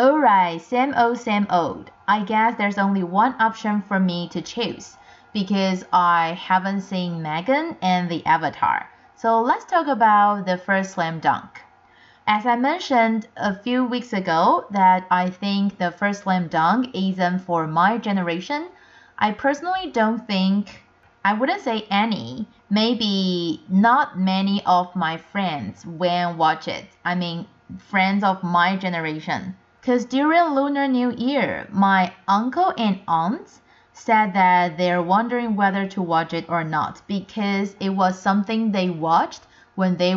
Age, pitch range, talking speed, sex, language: 30-49, 180-230 Hz, 150 wpm, female, English